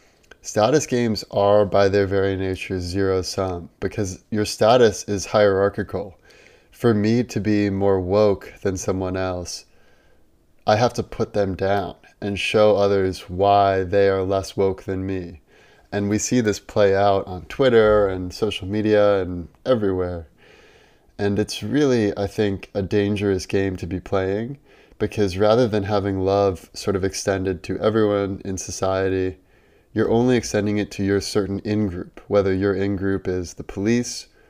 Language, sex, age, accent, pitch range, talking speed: English, male, 20-39, American, 95-105 Hz, 155 wpm